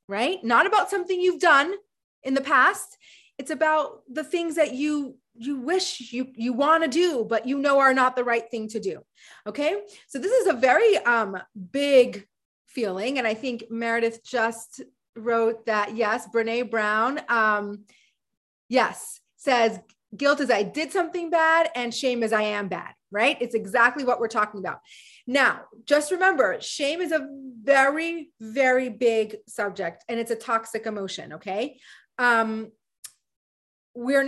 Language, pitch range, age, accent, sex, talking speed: English, 225-285 Hz, 30-49, American, female, 160 wpm